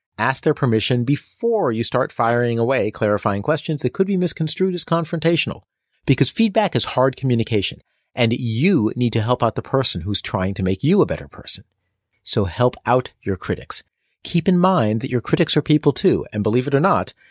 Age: 30-49